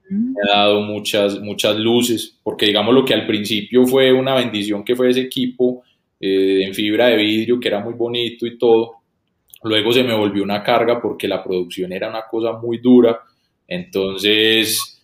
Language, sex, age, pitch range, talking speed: Spanish, male, 20-39, 100-120 Hz, 180 wpm